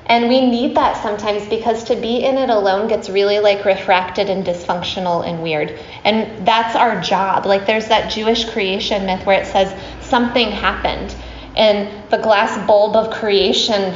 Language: English